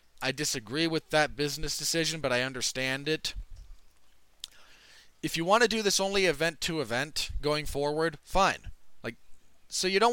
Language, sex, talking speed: English, male, 160 wpm